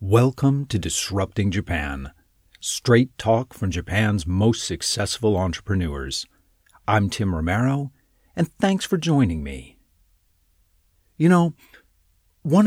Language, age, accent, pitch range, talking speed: English, 40-59, American, 85-130 Hz, 105 wpm